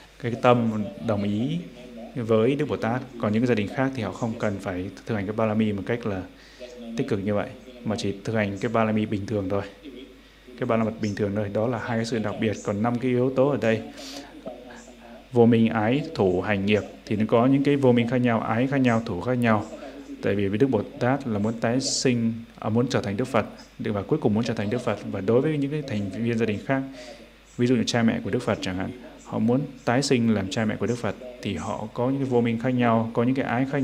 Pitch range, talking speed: 110-135 Hz, 255 wpm